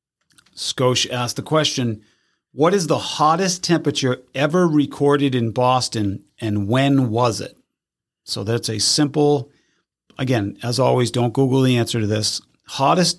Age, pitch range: 40-59, 115-140 Hz